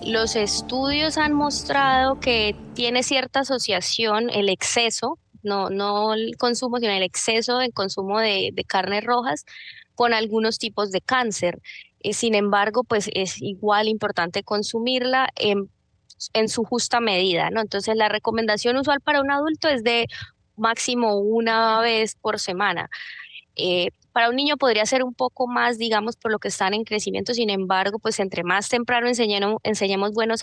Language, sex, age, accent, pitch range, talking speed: Spanish, female, 20-39, Colombian, 200-235 Hz, 155 wpm